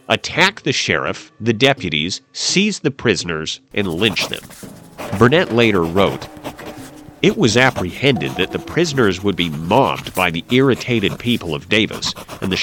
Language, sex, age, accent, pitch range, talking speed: English, male, 50-69, American, 95-150 Hz, 145 wpm